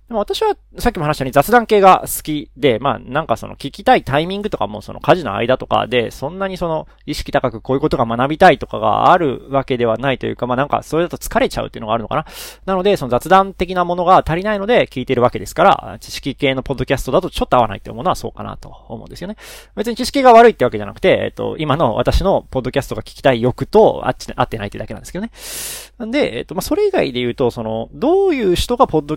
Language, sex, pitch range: Japanese, male, 125-190 Hz